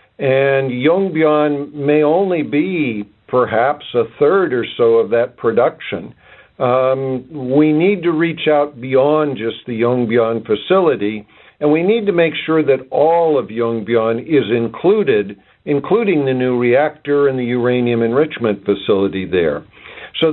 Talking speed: 140 wpm